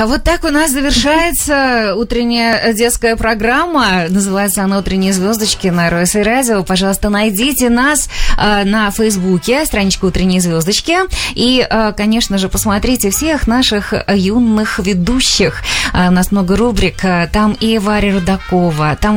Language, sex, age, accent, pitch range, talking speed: Russian, female, 20-39, native, 180-245 Hz, 130 wpm